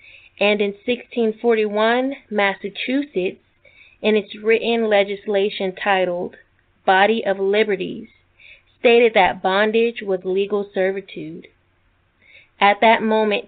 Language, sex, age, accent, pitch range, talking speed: English, female, 20-39, American, 180-215 Hz, 95 wpm